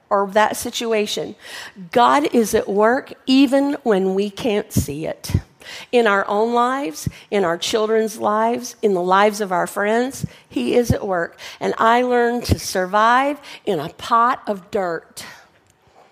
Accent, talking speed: American, 155 wpm